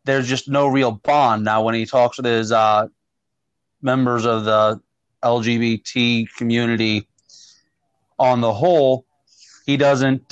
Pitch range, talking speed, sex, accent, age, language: 115-135 Hz, 130 wpm, male, American, 30-49, English